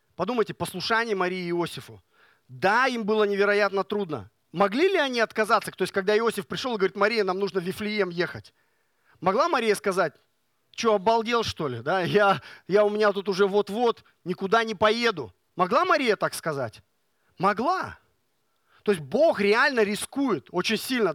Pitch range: 175-220 Hz